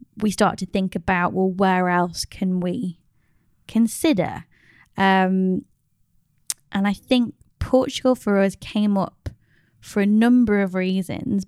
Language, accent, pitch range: English, British, 180-205 Hz